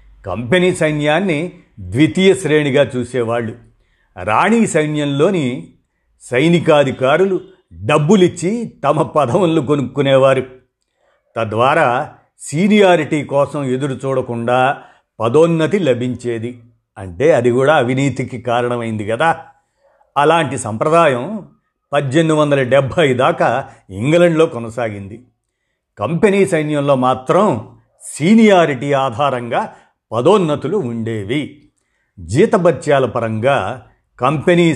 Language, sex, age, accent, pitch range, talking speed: Telugu, male, 50-69, native, 125-165 Hz, 75 wpm